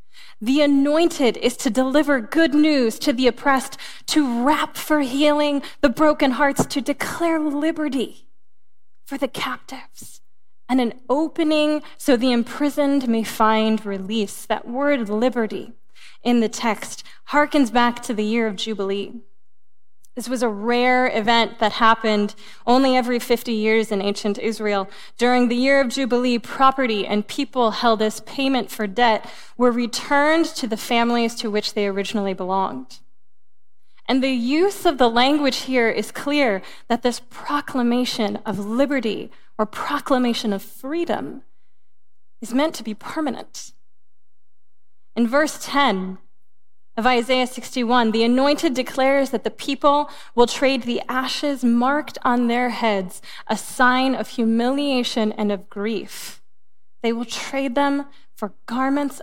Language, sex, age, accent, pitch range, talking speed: English, female, 20-39, American, 215-270 Hz, 140 wpm